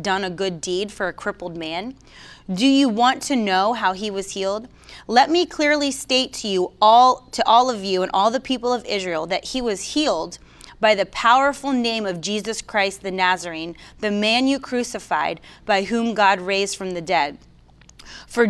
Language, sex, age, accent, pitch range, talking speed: English, female, 30-49, American, 190-245 Hz, 190 wpm